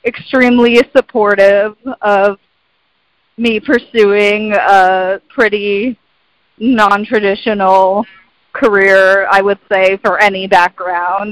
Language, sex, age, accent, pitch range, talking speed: English, female, 30-49, American, 190-235 Hz, 80 wpm